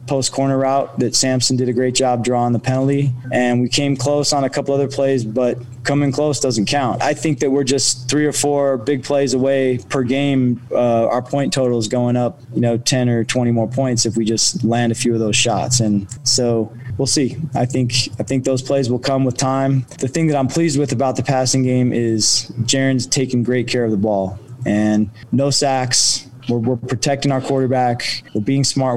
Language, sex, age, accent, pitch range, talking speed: English, male, 20-39, American, 120-140 Hz, 220 wpm